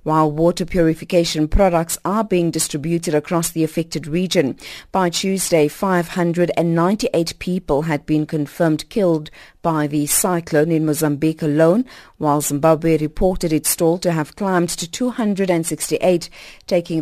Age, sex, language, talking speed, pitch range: 40-59, female, English, 125 wpm, 160-195 Hz